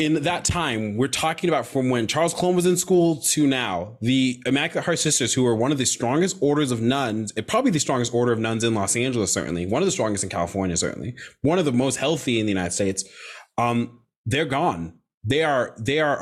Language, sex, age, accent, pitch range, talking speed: English, male, 20-39, American, 115-150 Hz, 230 wpm